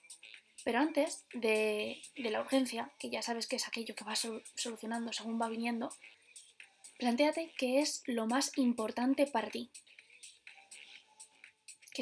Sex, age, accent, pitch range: female, 20-39, Spanish, 230-275 Hz